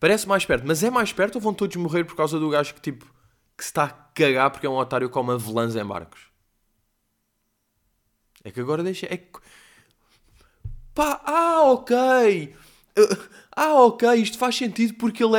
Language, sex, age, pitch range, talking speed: Portuguese, male, 20-39, 105-150 Hz, 185 wpm